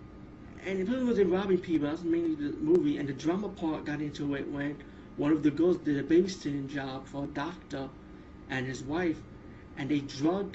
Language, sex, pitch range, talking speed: English, male, 145-175 Hz, 195 wpm